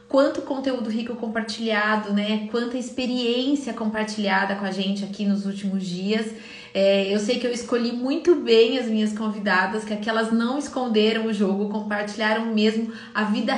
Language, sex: Portuguese, female